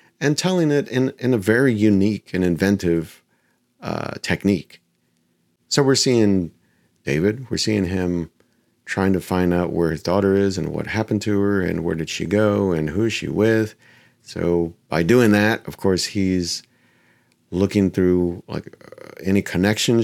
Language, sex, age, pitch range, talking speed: English, male, 40-59, 90-120 Hz, 160 wpm